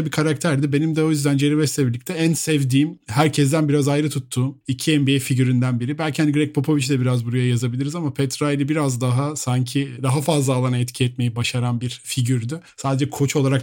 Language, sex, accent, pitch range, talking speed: Turkish, male, native, 130-150 Hz, 190 wpm